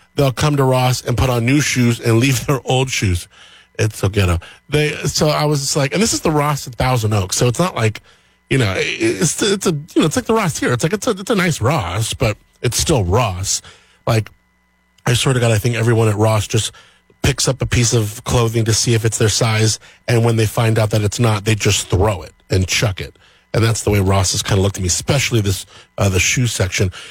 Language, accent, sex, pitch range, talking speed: English, American, male, 100-135 Hz, 255 wpm